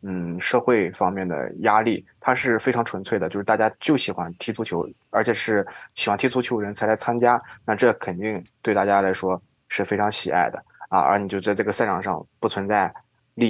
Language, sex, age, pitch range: Chinese, male, 20-39, 100-125 Hz